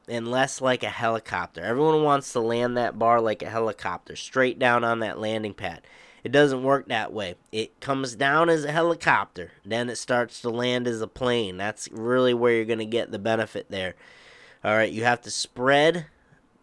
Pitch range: 115-140 Hz